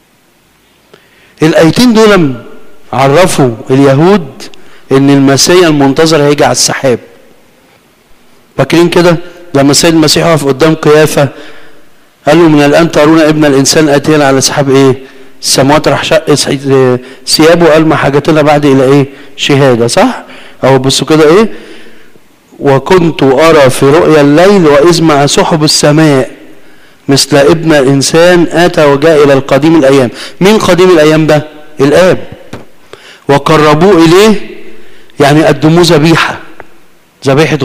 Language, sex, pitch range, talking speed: Arabic, male, 140-165 Hz, 115 wpm